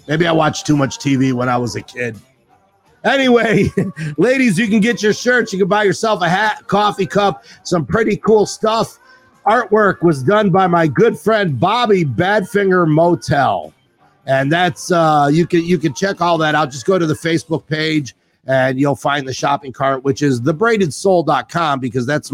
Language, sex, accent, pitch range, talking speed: English, male, American, 135-180 Hz, 185 wpm